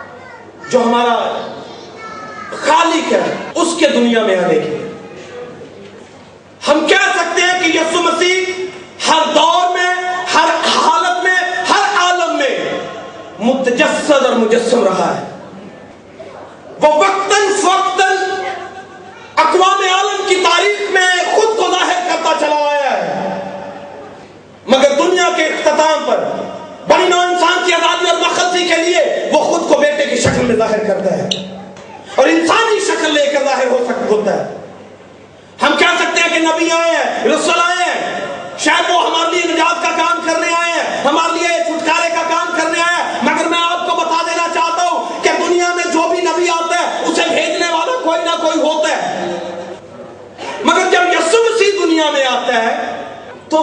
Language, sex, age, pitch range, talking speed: Urdu, male, 40-59, 295-350 Hz, 145 wpm